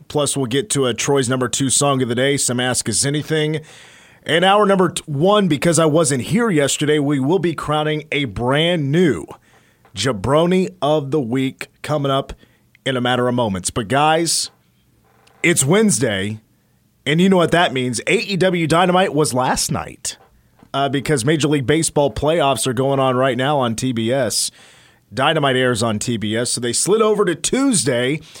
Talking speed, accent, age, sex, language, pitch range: 175 wpm, American, 30-49, male, English, 125-160 Hz